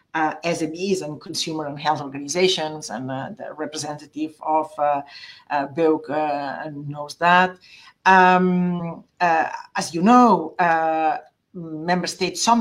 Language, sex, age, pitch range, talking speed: English, female, 50-69, 150-180 Hz, 130 wpm